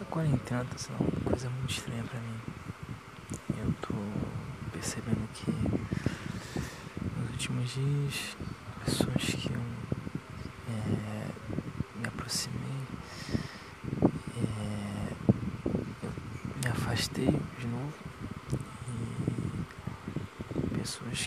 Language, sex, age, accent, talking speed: Portuguese, male, 20-39, Brazilian, 80 wpm